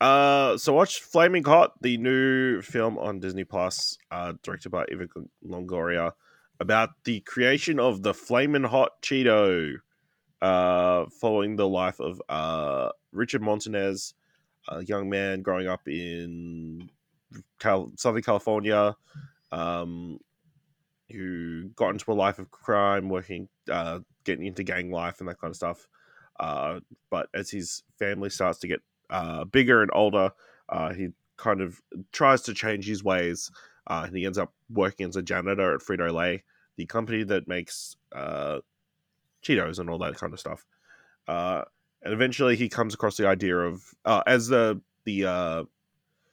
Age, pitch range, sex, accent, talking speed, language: 20-39, 90-115 Hz, male, Australian, 150 wpm, English